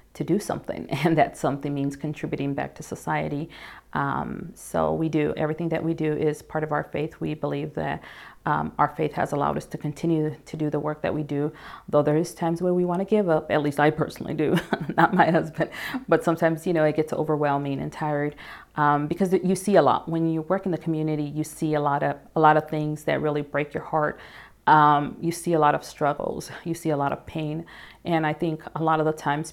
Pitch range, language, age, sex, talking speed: 150-165 Hz, English, 40-59, female, 235 wpm